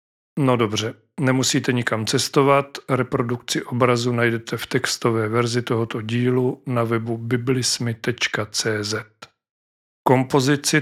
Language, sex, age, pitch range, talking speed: Czech, male, 40-59, 115-130 Hz, 95 wpm